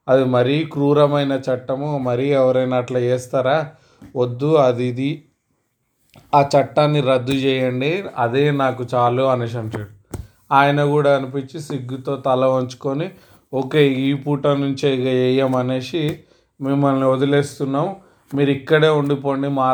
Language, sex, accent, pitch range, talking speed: Telugu, male, native, 125-150 Hz, 110 wpm